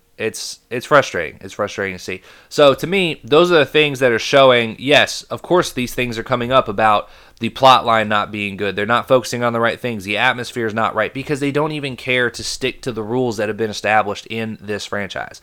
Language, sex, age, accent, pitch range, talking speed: English, male, 20-39, American, 100-125 Hz, 235 wpm